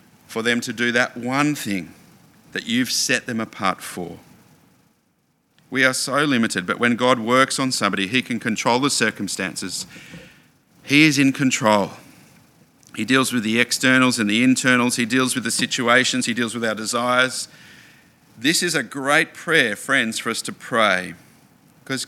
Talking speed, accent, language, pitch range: 165 wpm, Australian, English, 115-140 Hz